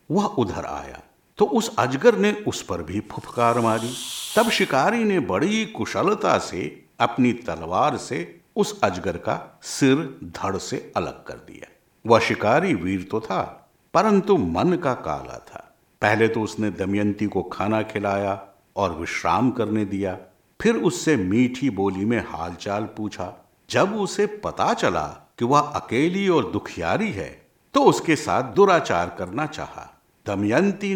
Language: Hindi